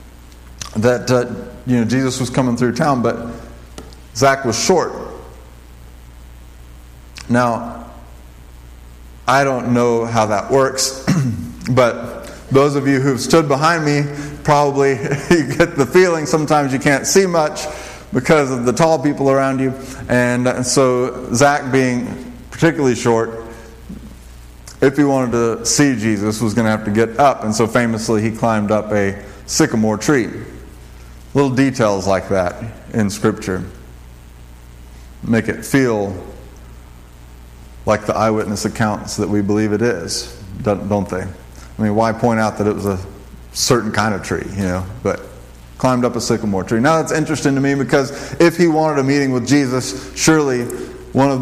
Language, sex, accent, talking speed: English, male, American, 155 wpm